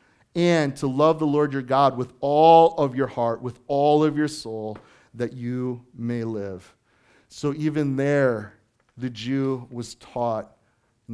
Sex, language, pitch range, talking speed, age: male, English, 110-135 Hz, 155 wpm, 40-59